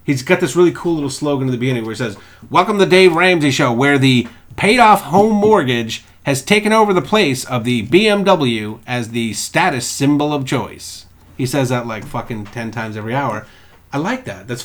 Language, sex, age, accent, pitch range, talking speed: English, male, 30-49, American, 130-195 Hz, 210 wpm